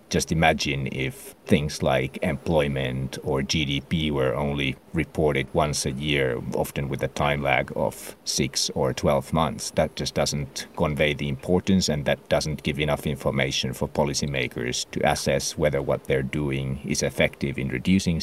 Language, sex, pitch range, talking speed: English, male, 70-75 Hz, 160 wpm